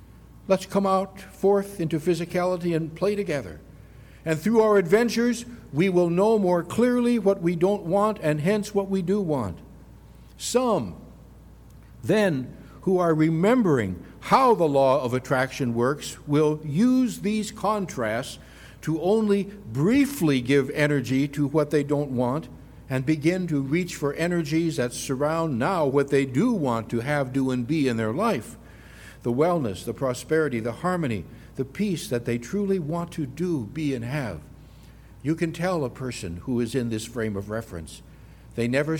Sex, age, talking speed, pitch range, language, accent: male, 60-79, 160 wpm, 120-170 Hz, English, American